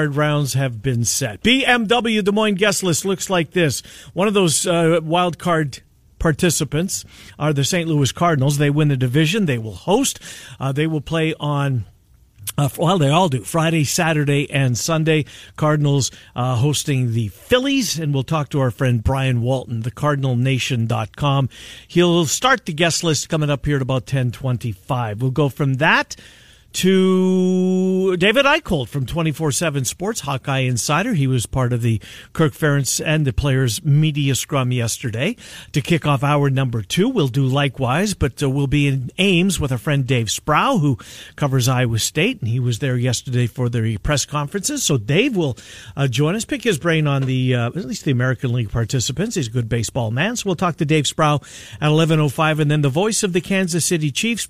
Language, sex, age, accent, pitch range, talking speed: English, male, 50-69, American, 125-165 Hz, 185 wpm